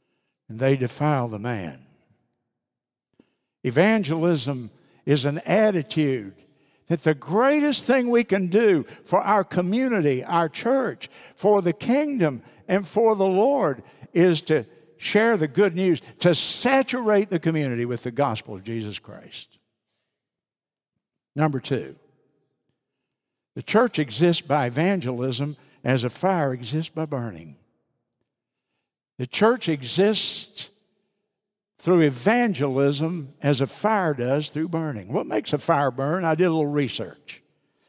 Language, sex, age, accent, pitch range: Japanese, male, 60-79, American, 135-190 Hz